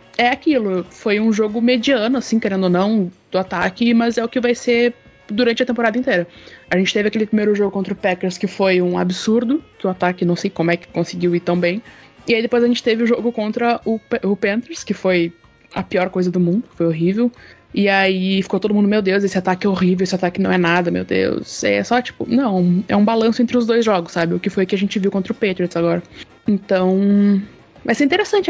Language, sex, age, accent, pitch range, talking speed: Portuguese, female, 20-39, Brazilian, 185-230 Hz, 240 wpm